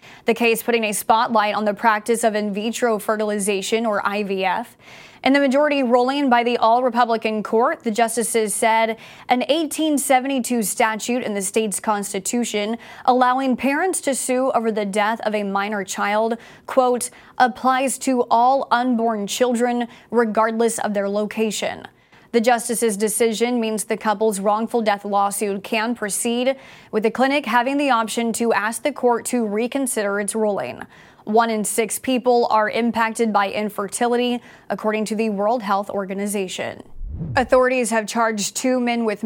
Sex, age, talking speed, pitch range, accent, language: female, 20-39, 150 wpm, 210-245 Hz, American, English